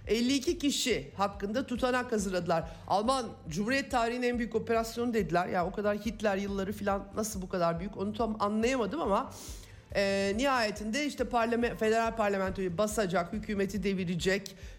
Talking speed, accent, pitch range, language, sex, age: 140 wpm, native, 180-235 Hz, Turkish, male, 50-69